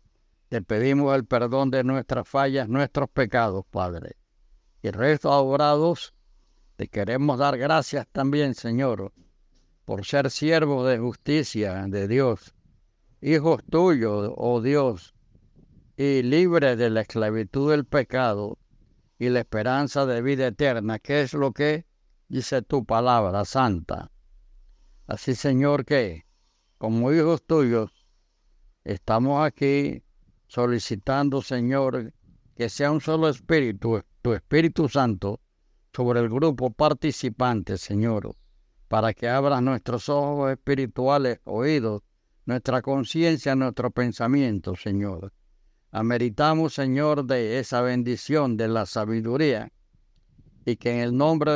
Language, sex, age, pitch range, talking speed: Spanish, male, 60-79, 110-140 Hz, 115 wpm